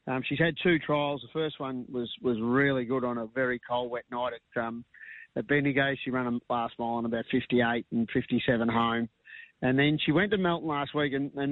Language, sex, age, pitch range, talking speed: English, male, 50-69, 120-140 Hz, 235 wpm